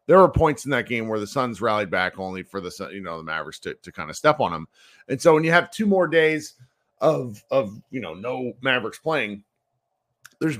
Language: English